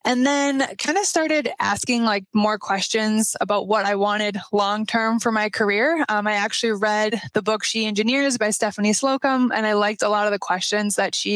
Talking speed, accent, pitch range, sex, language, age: 205 wpm, American, 205-235 Hz, female, English, 20-39